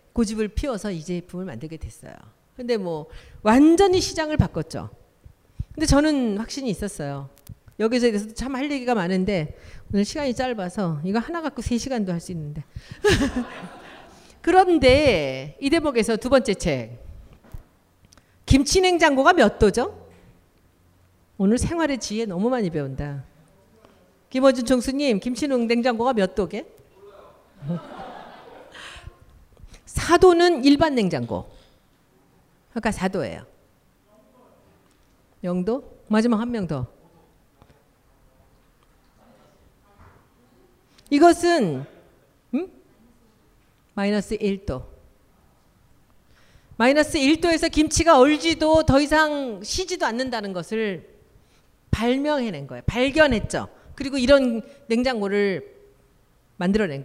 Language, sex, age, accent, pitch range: Korean, female, 50-69, native, 175-275 Hz